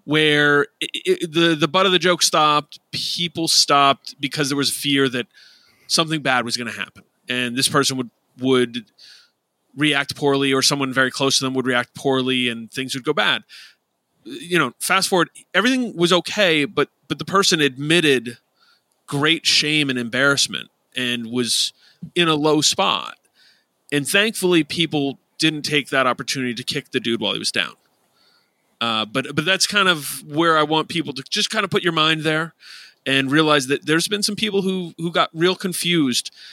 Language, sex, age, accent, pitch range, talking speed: English, male, 30-49, American, 135-170 Hz, 185 wpm